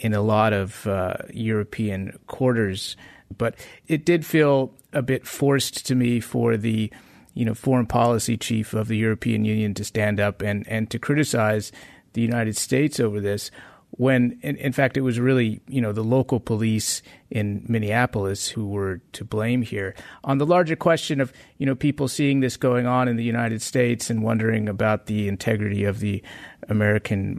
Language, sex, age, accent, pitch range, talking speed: English, male, 30-49, American, 105-130 Hz, 180 wpm